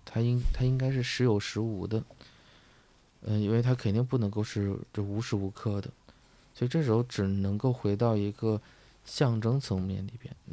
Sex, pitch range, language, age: male, 100-120 Hz, Chinese, 20-39